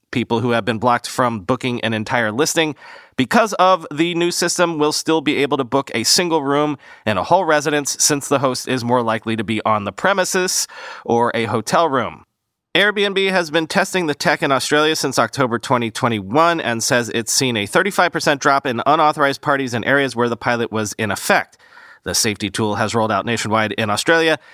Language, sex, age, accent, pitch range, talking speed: English, male, 30-49, American, 120-160 Hz, 200 wpm